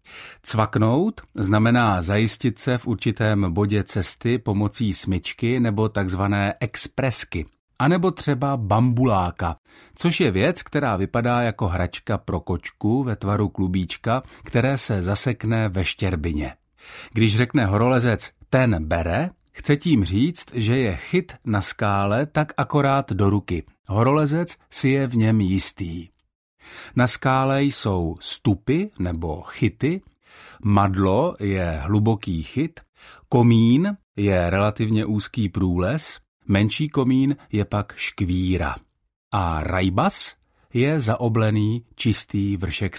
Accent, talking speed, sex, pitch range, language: native, 115 wpm, male, 95-125 Hz, Czech